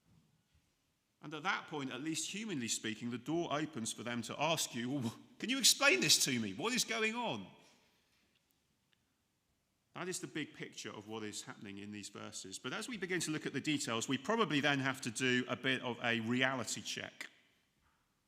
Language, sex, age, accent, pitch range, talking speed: English, male, 40-59, British, 130-170 Hz, 195 wpm